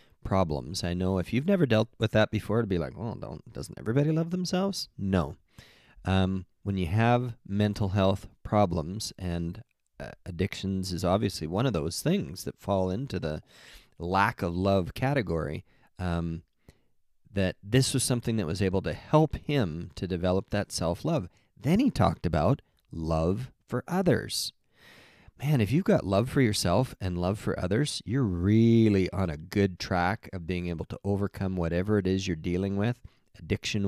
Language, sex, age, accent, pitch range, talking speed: English, male, 30-49, American, 90-110 Hz, 170 wpm